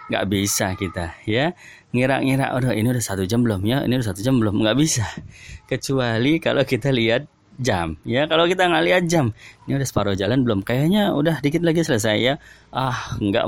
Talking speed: 190 wpm